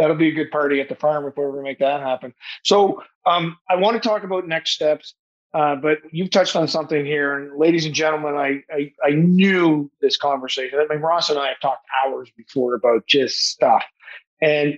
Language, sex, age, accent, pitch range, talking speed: English, male, 40-59, American, 140-165 Hz, 215 wpm